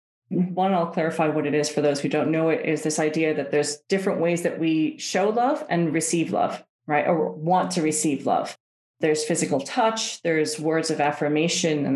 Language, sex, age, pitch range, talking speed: English, female, 30-49, 150-175 Hz, 200 wpm